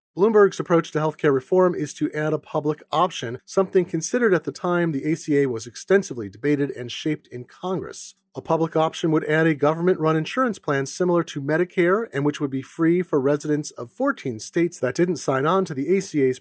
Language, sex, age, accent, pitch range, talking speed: English, male, 30-49, American, 140-180 Hz, 200 wpm